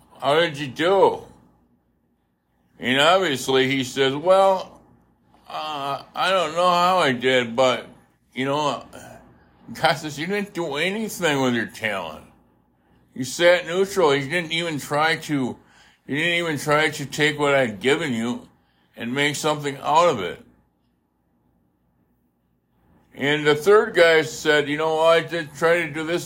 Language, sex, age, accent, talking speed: English, male, 60-79, American, 150 wpm